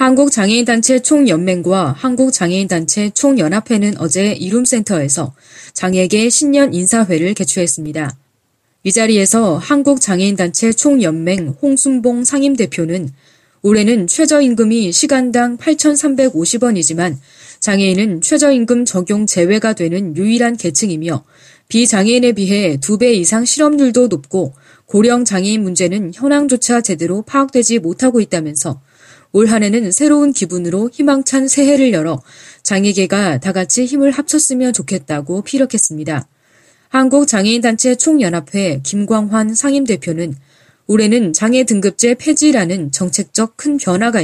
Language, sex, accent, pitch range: Korean, female, native, 175-250 Hz